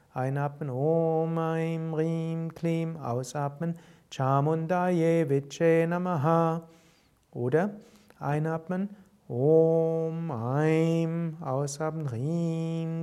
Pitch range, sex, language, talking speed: 145-160 Hz, male, German, 65 wpm